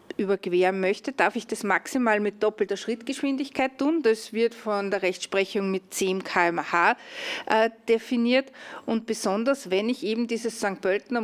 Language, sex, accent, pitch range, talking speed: German, female, Austrian, 195-240 Hz, 145 wpm